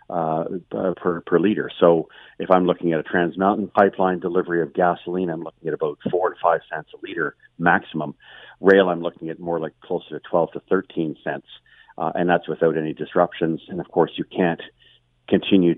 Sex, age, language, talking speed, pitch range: male, 50-69, English, 195 wpm, 80-90 Hz